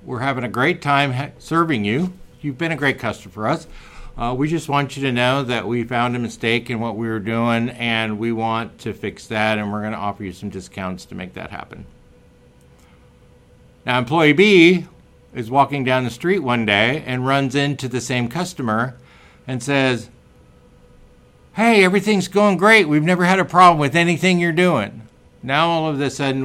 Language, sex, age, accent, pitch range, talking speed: English, male, 60-79, American, 110-140 Hz, 195 wpm